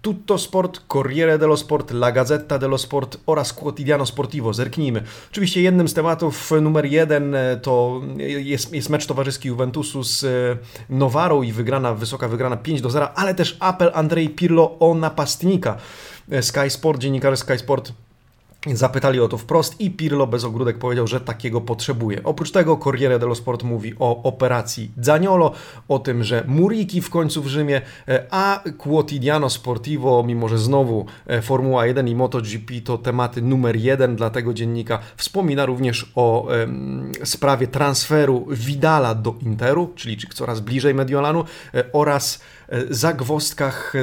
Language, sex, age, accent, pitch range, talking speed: Polish, male, 30-49, native, 120-150 Hz, 145 wpm